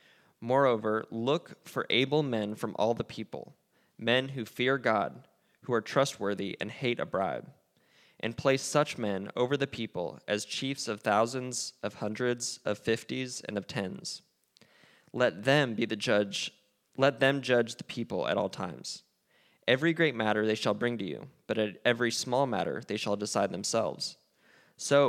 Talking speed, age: 165 wpm, 20-39